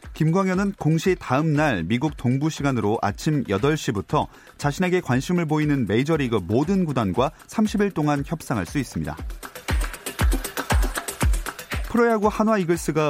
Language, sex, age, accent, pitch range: Korean, male, 30-49, native, 125-180 Hz